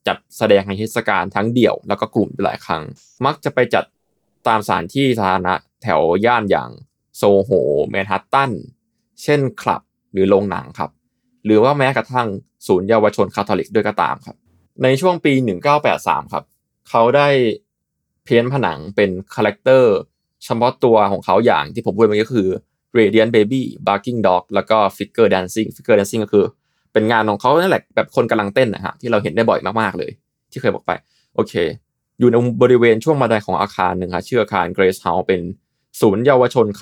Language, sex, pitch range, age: Thai, male, 100-125 Hz, 20-39